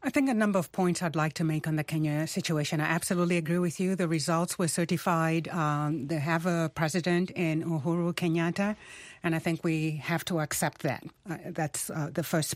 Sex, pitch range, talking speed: female, 160-195 Hz, 210 wpm